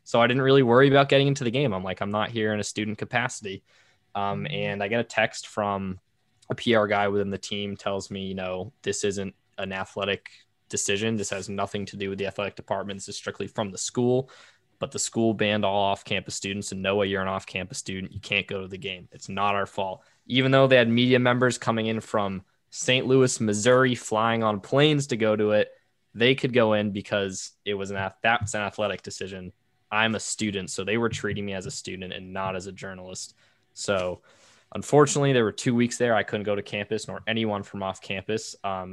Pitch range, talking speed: 100-120 Hz, 225 wpm